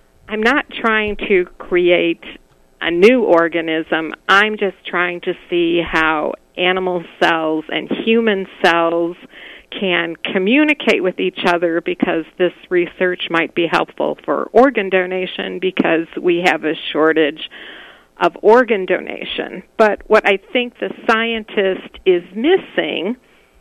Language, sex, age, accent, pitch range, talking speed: English, female, 50-69, American, 170-210 Hz, 125 wpm